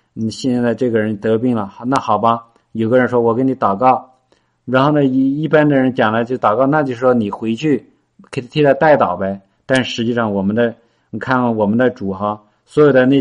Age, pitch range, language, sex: 50-69, 105-125 Hz, Chinese, male